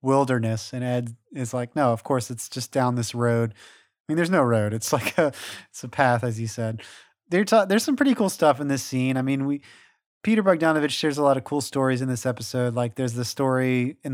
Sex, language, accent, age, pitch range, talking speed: male, English, American, 30-49, 120-140 Hz, 240 wpm